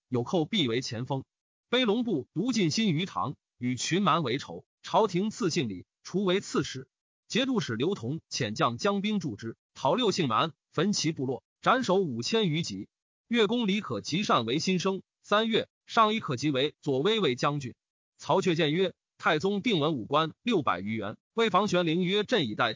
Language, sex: Chinese, male